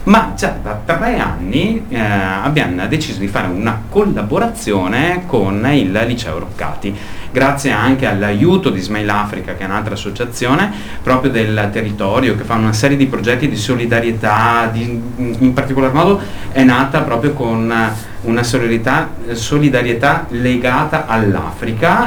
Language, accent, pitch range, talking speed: Italian, native, 100-130 Hz, 135 wpm